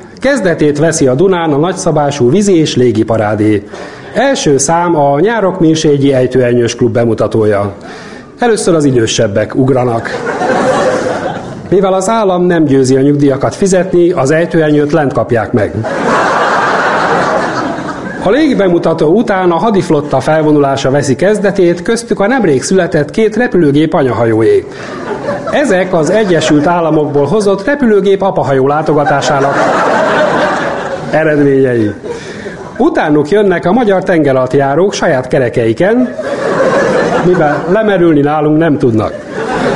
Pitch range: 135-190 Hz